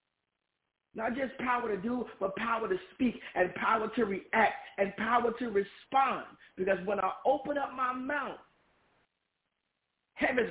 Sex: male